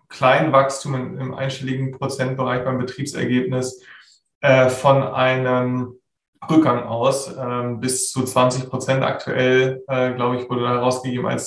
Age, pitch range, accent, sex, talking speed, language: 20-39, 125-135 Hz, German, male, 130 wpm, German